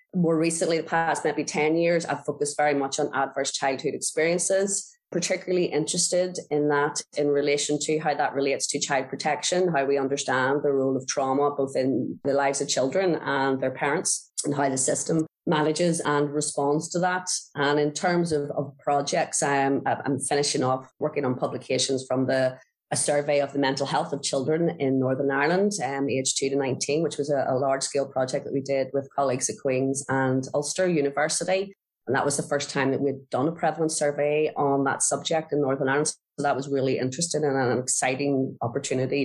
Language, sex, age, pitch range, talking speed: English, female, 30-49, 135-155 Hz, 195 wpm